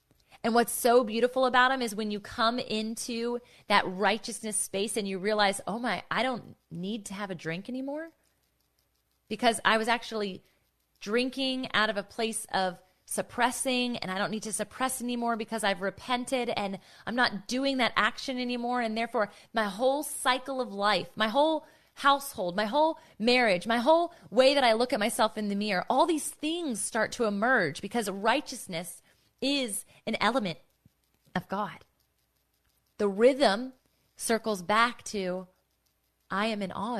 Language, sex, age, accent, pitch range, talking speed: English, female, 20-39, American, 205-260 Hz, 165 wpm